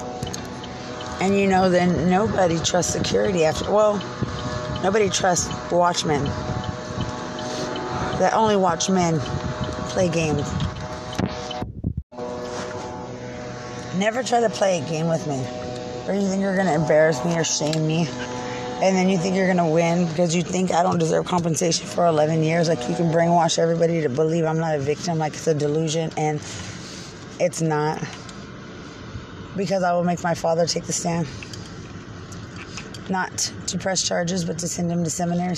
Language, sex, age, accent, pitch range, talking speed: English, female, 30-49, American, 125-175 Hz, 155 wpm